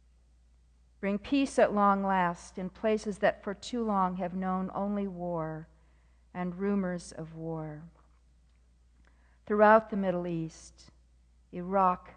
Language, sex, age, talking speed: English, female, 50-69, 115 wpm